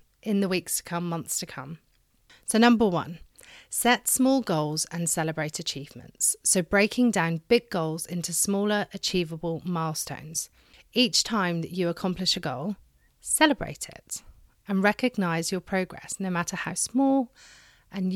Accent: British